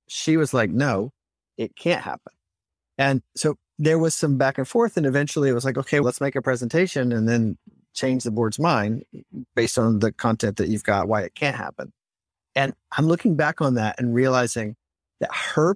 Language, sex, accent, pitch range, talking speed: English, male, American, 110-150 Hz, 200 wpm